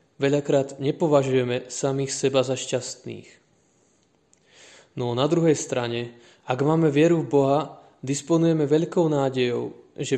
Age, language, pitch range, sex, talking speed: 20-39, Slovak, 130-150 Hz, male, 120 wpm